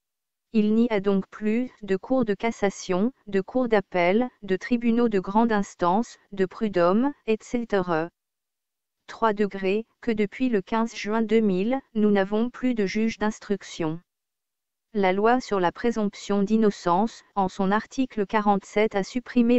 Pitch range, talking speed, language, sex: 195-230 Hz, 140 wpm, French, female